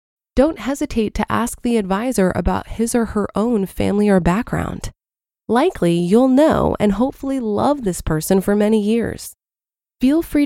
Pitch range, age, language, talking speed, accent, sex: 195-255 Hz, 20-39, English, 155 wpm, American, female